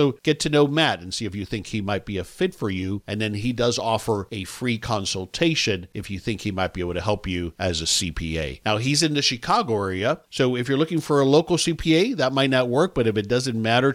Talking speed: 260 wpm